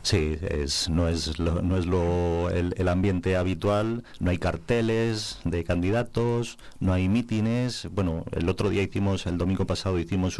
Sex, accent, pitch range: male, Spanish, 80-95 Hz